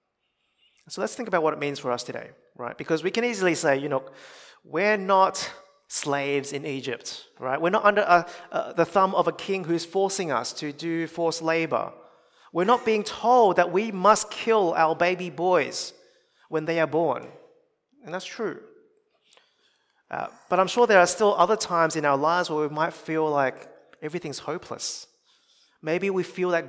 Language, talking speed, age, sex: English, 180 wpm, 30-49, male